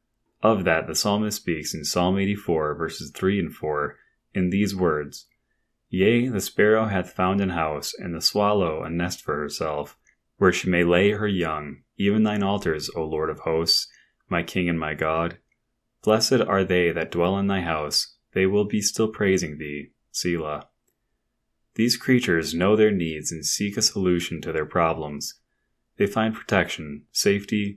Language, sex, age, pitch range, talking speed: English, male, 20-39, 85-105 Hz, 170 wpm